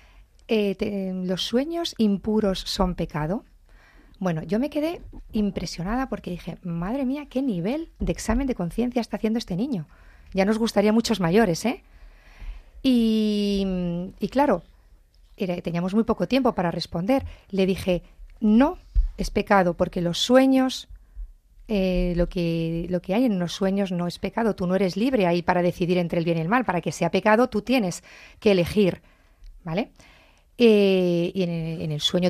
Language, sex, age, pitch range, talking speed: Spanish, female, 40-59, 180-230 Hz, 165 wpm